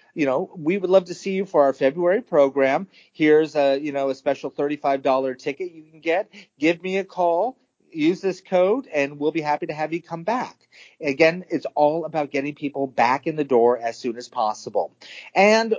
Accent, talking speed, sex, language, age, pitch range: American, 205 wpm, male, English, 40-59, 140-185 Hz